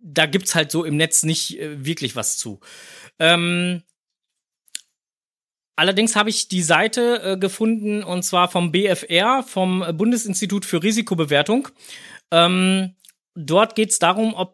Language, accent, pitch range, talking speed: German, German, 135-185 Hz, 135 wpm